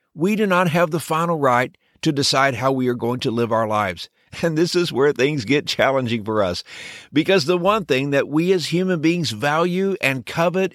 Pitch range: 130-175 Hz